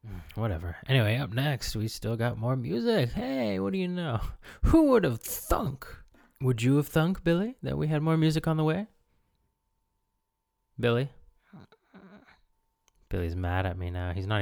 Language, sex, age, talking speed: English, male, 20-39, 160 wpm